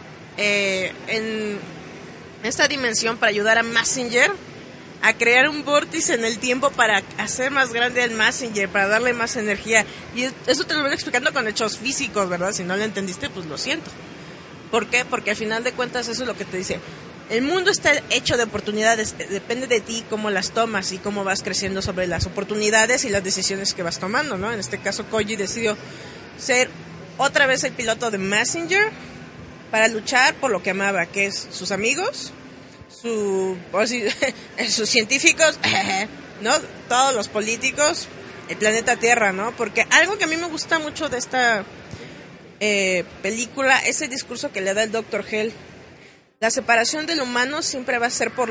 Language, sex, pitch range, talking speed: Spanish, female, 205-255 Hz, 180 wpm